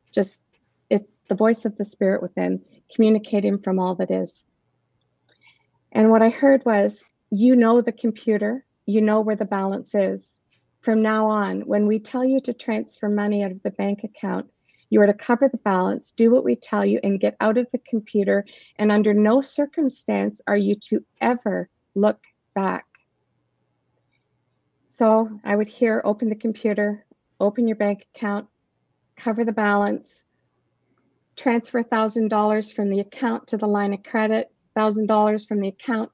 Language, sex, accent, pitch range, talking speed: English, female, American, 200-230 Hz, 165 wpm